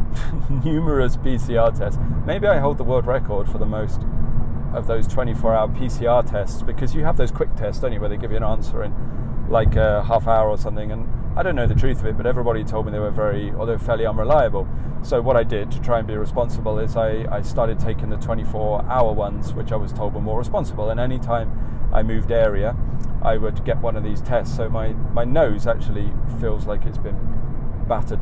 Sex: male